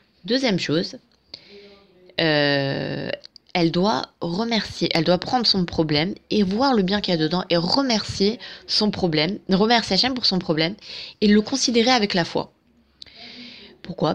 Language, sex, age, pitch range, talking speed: French, female, 20-39, 160-215 Hz, 150 wpm